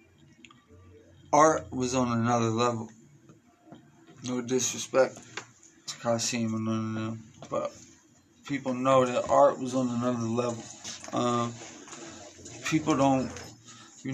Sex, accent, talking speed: male, American, 110 wpm